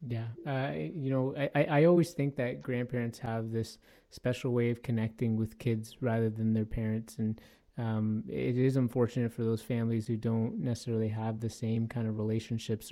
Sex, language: male, English